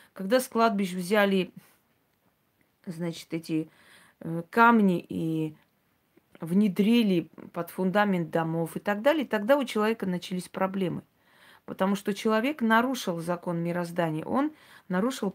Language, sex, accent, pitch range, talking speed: Russian, female, native, 170-215 Hz, 110 wpm